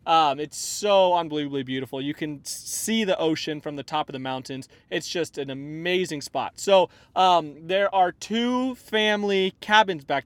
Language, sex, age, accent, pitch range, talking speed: English, male, 30-49, American, 150-190 Hz, 170 wpm